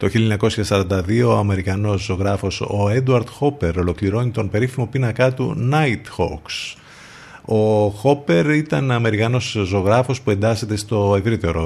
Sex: male